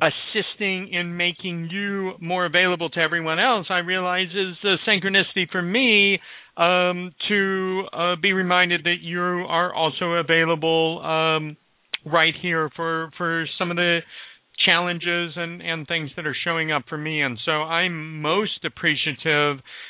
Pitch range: 165-190 Hz